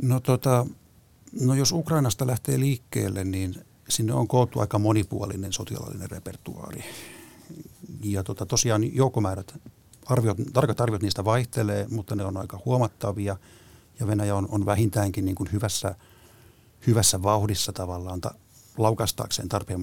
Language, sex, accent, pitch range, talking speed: Finnish, male, native, 100-115 Hz, 125 wpm